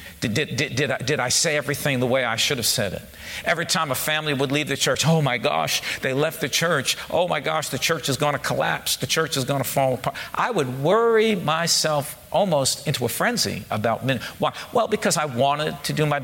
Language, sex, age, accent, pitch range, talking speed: English, male, 50-69, American, 135-170 Hz, 225 wpm